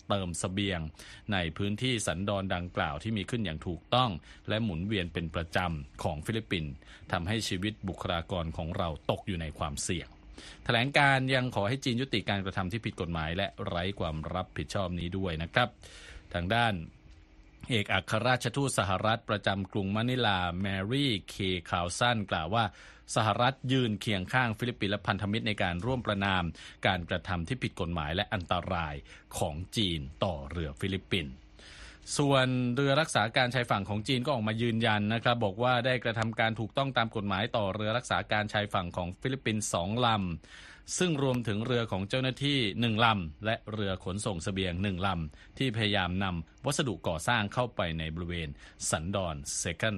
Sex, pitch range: male, 90-115 Hz